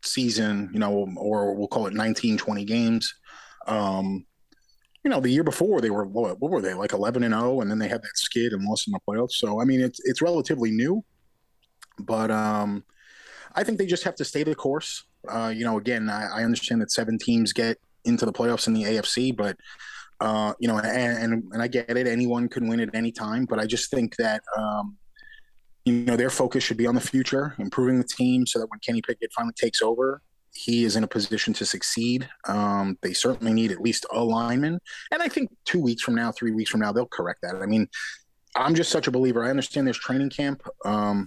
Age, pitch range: 20-39, 110-130 Hz